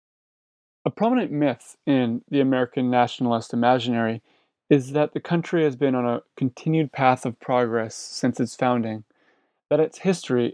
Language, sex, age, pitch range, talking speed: English, male, 30-49, 120-140 Hz, 150 wpm